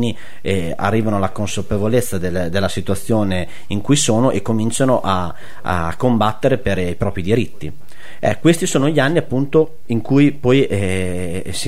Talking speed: 155 wpm